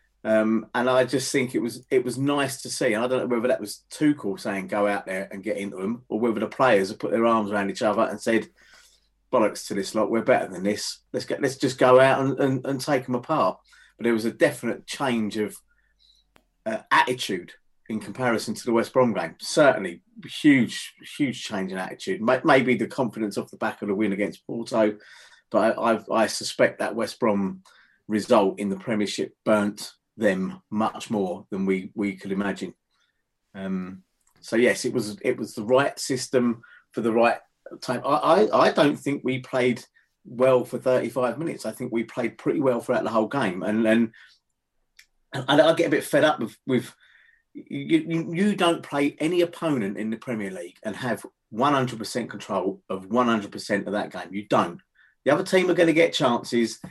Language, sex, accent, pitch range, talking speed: English, male, British, 105-135 Hz, 200 wpm